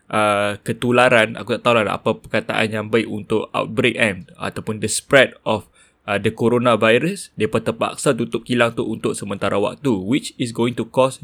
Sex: male